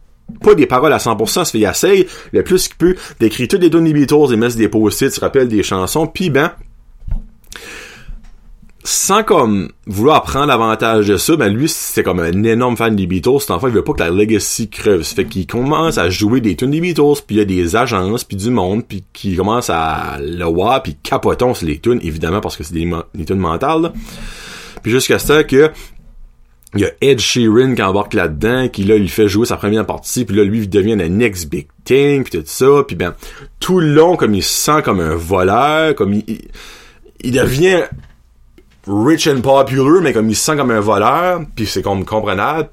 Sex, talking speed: male, 220 wpm